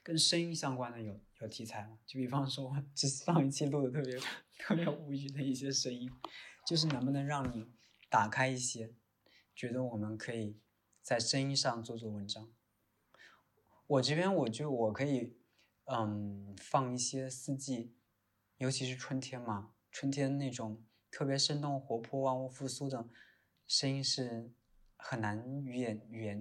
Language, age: Chinese, 20-39